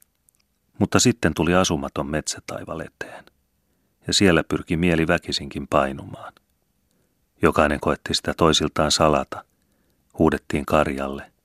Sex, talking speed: male, 95 wpm